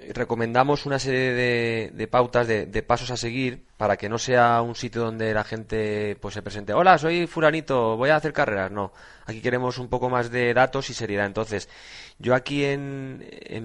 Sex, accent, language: male, Spanish, Spanish